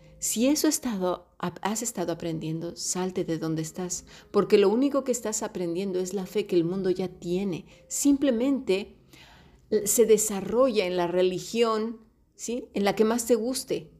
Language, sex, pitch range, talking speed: Spanish, female, 175-225 Hz, 165 wpm